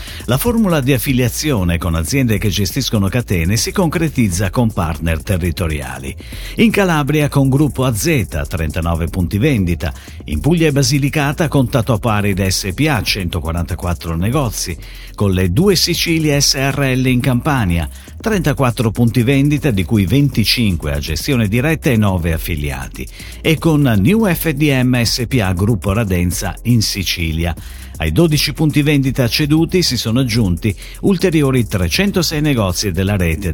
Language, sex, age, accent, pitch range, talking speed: Italian, male, 50-69, native, 90-145 Hz, 130 wpm